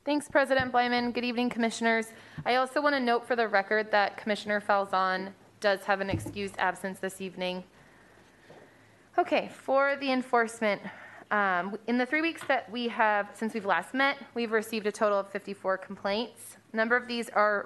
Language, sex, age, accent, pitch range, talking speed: English, female, 20-39, American, 195-235 Hz, 175 wpm